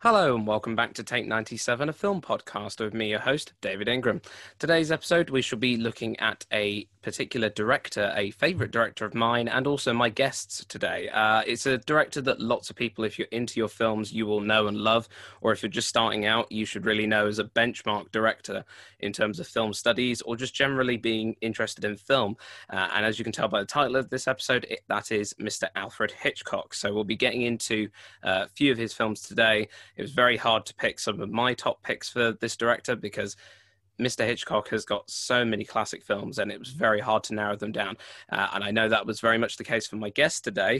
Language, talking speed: English, 230 wpm